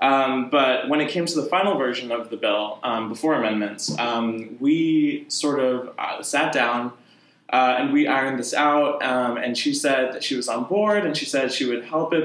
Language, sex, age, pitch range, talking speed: English, male, 20-39, 130-175 Hz, 215 wpm